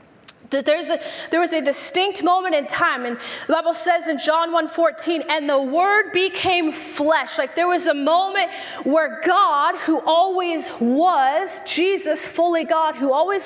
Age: 30-49